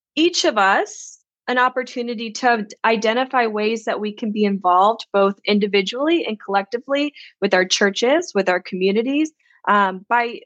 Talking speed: 145 wpm